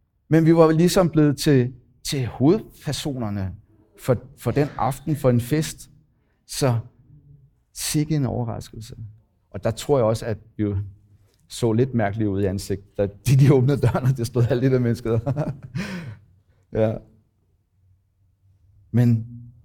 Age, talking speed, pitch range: 60-79, 135 wpm, 105-145 Hz